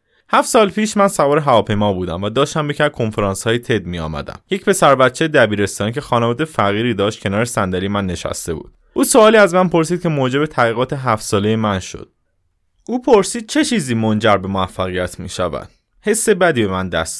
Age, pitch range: 20-39, 100-155 Hz